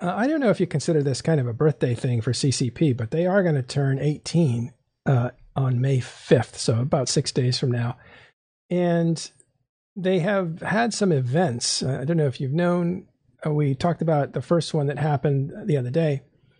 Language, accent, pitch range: English, American, 130-165 Hz